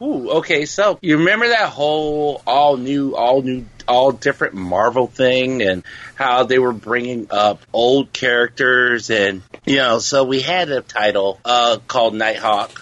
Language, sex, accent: English, male, American